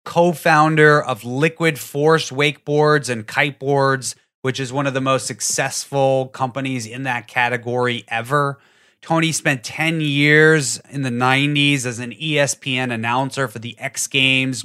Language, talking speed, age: English, 140 wpm, 30-49